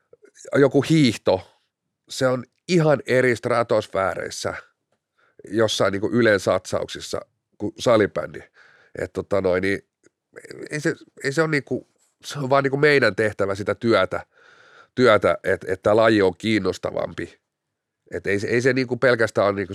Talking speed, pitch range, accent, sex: 105 wpm, 115-170 Hz, native, male